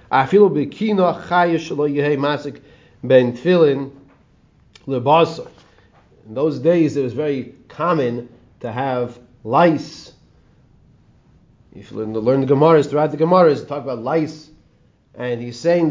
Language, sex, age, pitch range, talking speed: English, male, 30-49, 120-155 Hz, 100 wpm